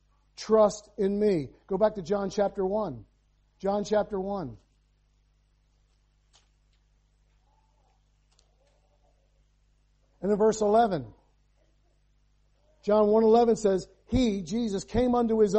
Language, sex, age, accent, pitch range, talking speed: English, male, 50-69, American, 190-250 Hz, 90 wpm